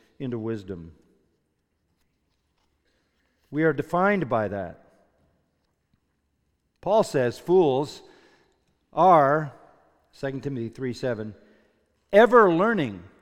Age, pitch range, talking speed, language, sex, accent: 50-69, 85-135 Hz, 75 wpm, English, male, American